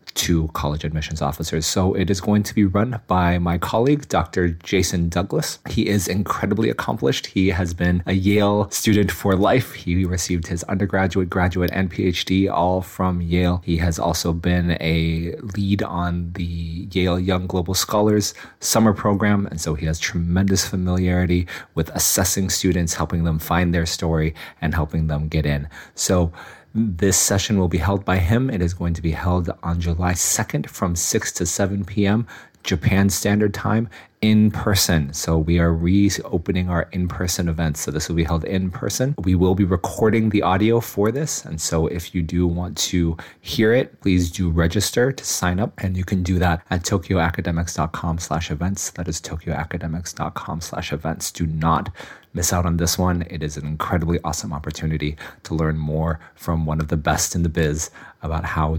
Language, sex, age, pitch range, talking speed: English, male, 30-49, 80-100 Hz, 175 wpm